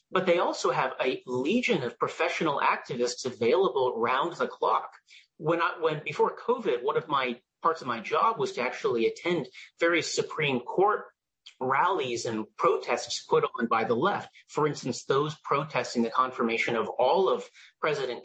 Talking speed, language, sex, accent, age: 165 wpm, English, male, American, 40-59